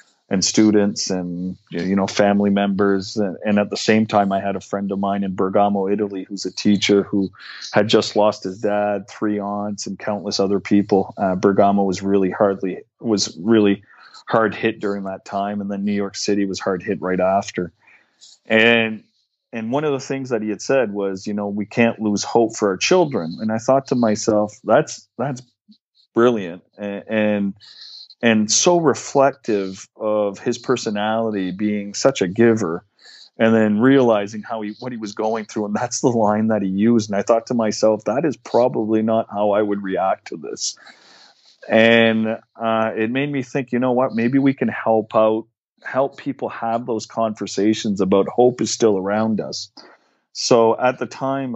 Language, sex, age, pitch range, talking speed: English, male, 30-49, 100-115 Hz, 185 wpm